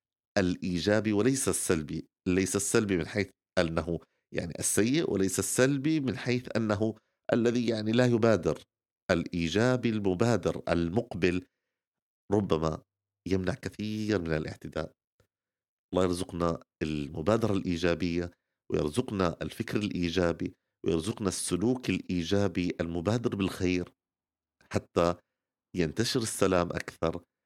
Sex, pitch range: male, 85-115 Hz